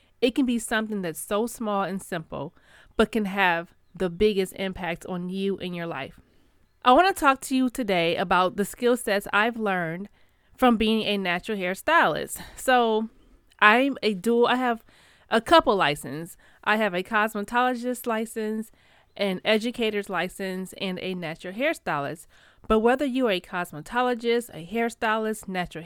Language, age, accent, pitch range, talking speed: English, 30-49, American, 180-235 Hz, 155 wpm